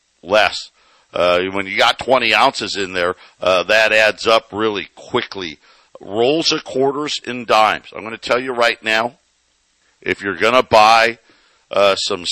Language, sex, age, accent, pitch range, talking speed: English, male, 50-69, American, 90-125 Hz, 155 wpm